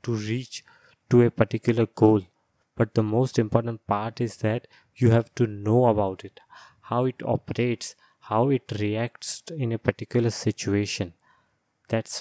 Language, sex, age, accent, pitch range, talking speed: English, male, 20-39, Indian, 110-130 Hz, 145 wpm